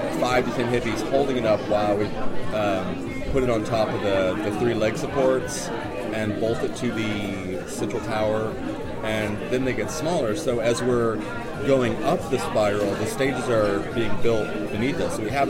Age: 30-49